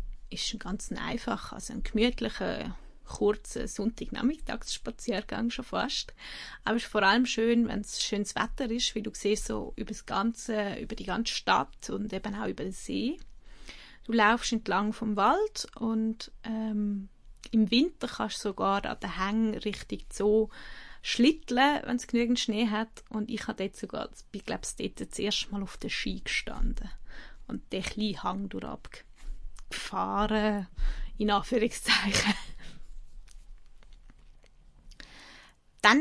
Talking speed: 145 wpm